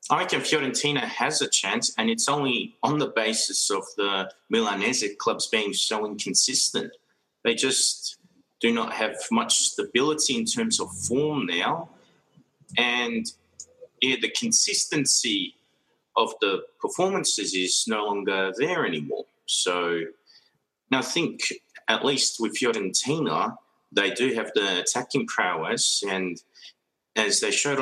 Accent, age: Australian, 30-49